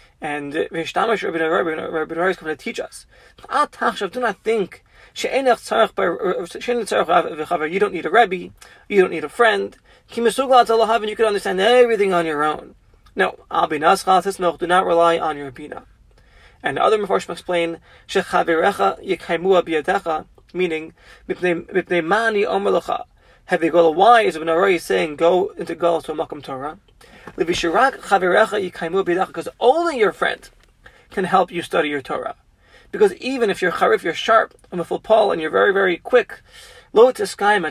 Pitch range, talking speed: 165-230 Hz, 125 wpm